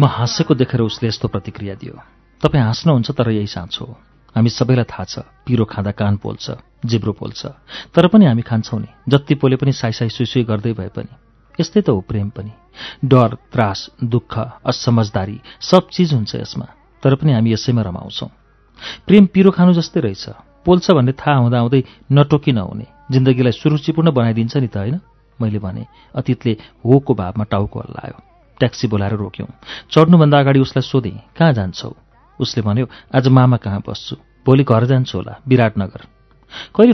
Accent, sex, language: Indian, male, English